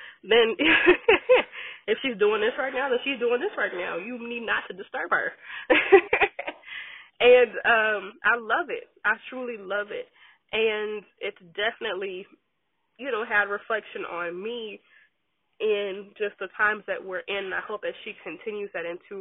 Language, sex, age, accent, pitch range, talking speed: English, female, 20-39, American, 190-270 Hz, 165 wpm